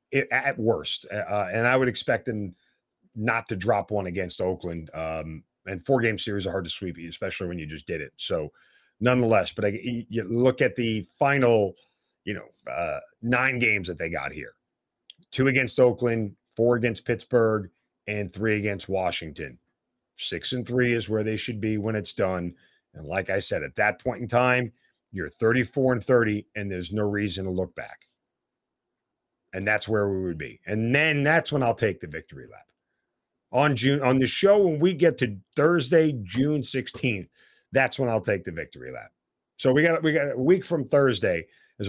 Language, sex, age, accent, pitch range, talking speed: English, male, 40-59, American, 100-125 Hz, 190 wpm